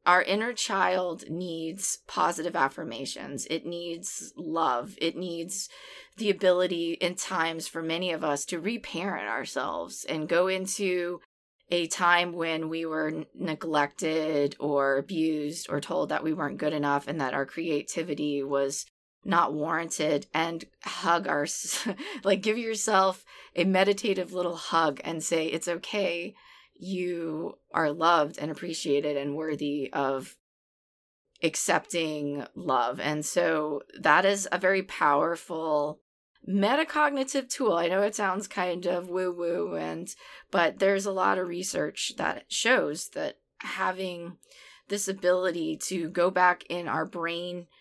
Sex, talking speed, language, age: female, 135 wpm, English, 20-39